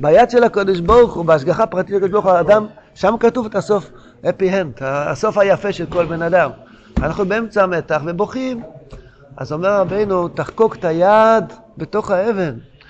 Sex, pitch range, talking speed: male, 150-195 Hz, 165 wpm